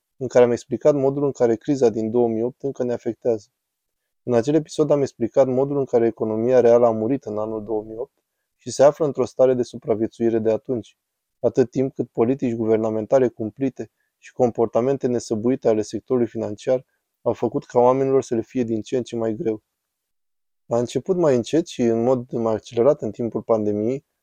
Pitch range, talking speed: 115-130 Hz, 185 wpm